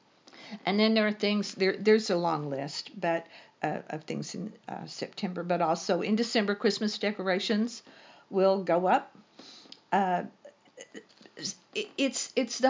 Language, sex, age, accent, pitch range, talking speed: English, female, 50-69, American, 180-220 Hz, 140 wpm